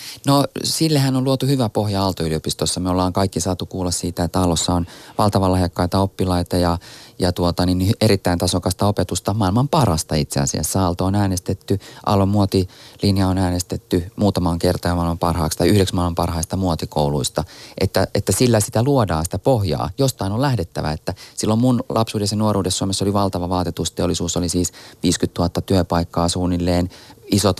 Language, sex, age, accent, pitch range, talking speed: Finnish, male, 30-49, native, 90-110 Hz, 160 wpm